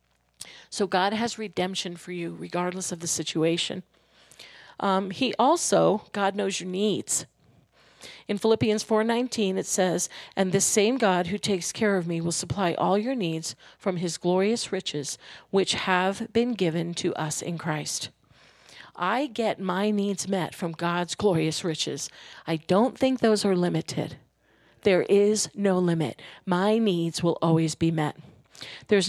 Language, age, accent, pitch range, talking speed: English, 40-59, American, 165-205 Hz, 155 wpm